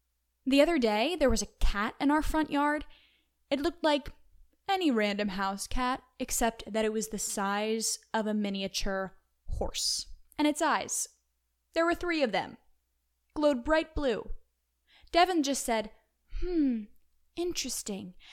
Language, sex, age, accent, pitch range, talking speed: English, female, 10-29, American, 210-295 Hz, 145 wpm